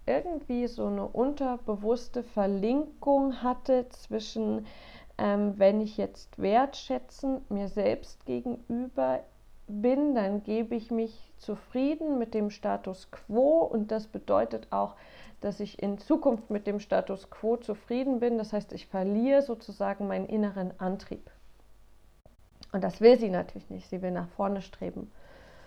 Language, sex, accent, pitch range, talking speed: German, female, German, 195-240 Hz, 135 wpm